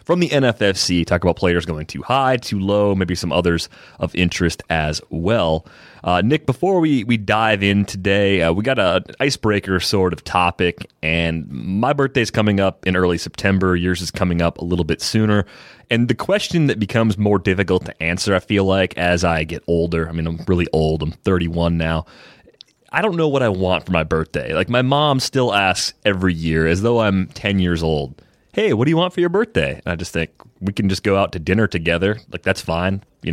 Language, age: English, 30-49